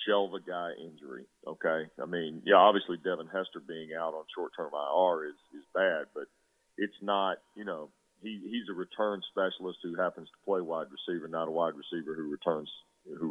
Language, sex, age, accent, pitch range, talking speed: English, male, 40-59, American, 85-105 Hz, 185 wpm